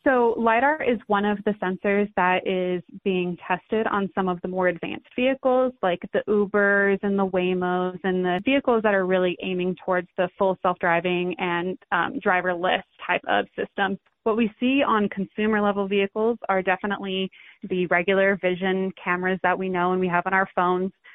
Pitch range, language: 180-205 Hz, English